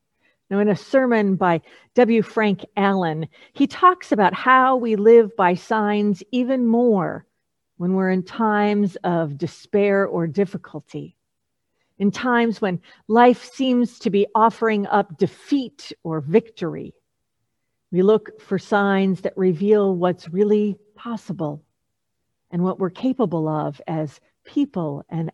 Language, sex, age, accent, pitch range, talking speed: English, female, 50-69, American, 180-235 Hz, 130 wpm